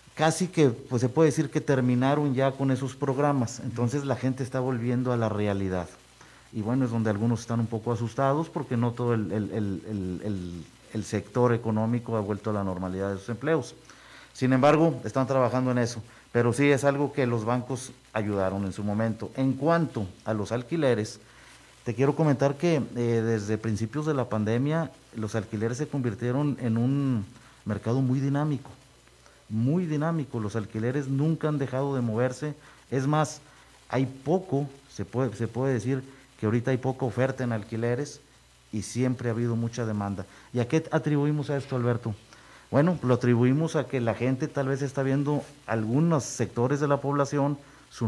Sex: male